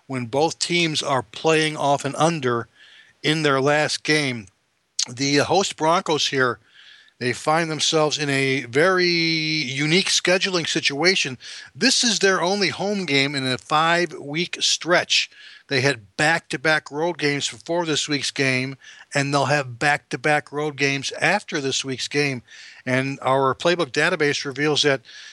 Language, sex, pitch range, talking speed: English, male, 135-160 Hz, 140 wpm